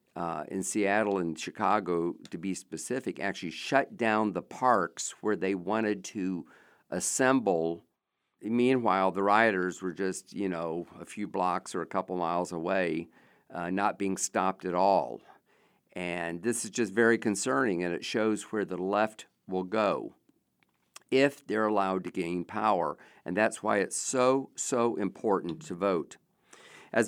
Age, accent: 50-69, American